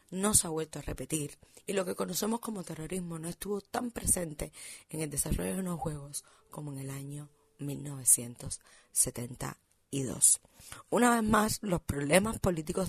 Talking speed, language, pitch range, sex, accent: 155 wpm, Spanish, 150-190 Hz, female, American